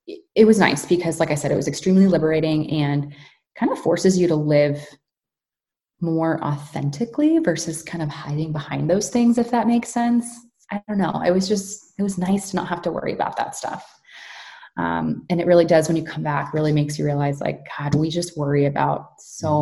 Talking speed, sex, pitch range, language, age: 210 wpm, female, 150-190 Hz, English, 20-39